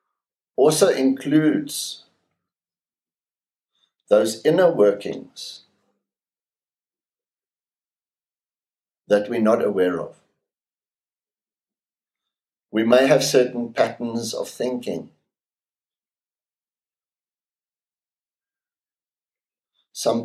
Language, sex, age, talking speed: English, male, 60-79, 55 wpm